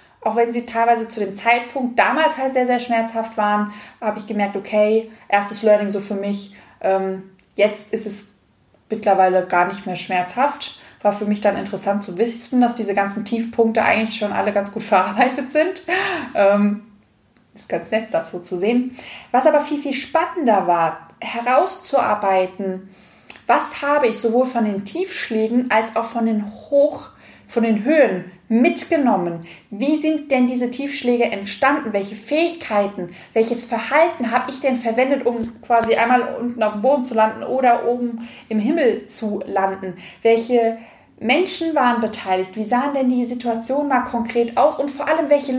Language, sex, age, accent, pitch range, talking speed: German, female, 20-39, German, 210-265 Hz, 160 wpm